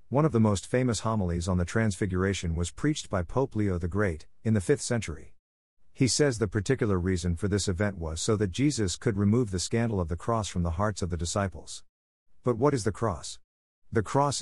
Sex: male